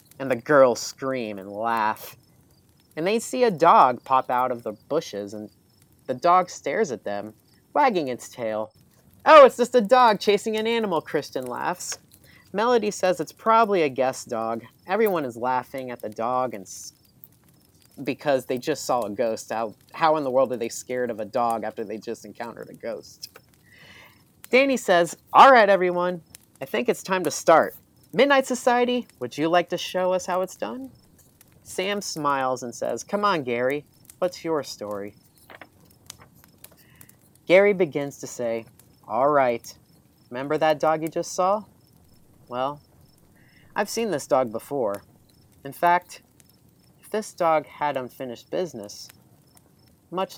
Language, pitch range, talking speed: English, 120-190 Hz, 155 wpm